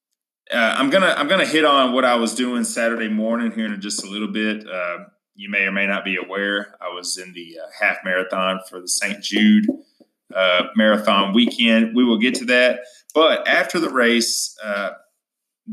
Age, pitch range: 20-39, 105-160 Hz